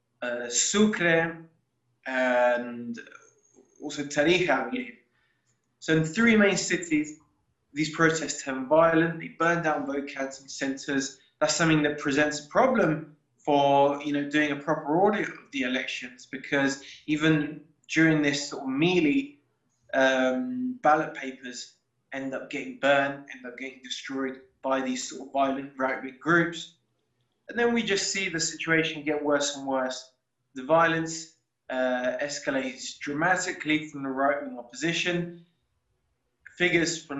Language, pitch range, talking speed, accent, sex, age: English, 135-165 Hz, 135 wpm, British, male, 20-39